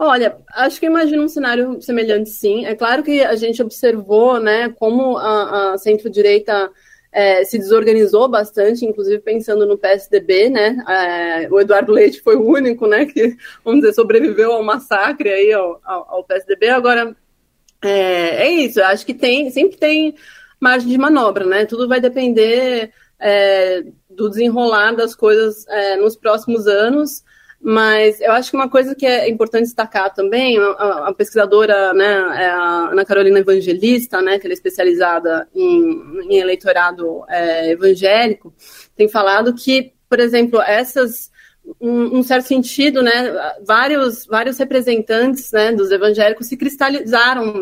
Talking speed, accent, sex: 150 wpm, Brazilian, female